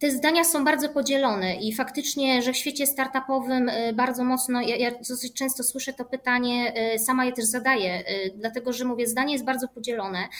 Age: 20-39